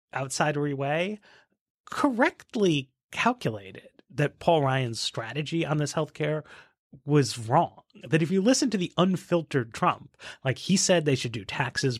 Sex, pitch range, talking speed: male, 135-185 Hz, 145 wpm